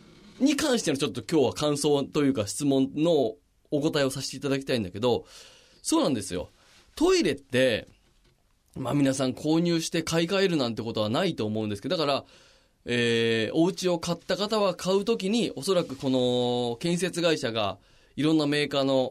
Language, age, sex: Japanese, 20-39, male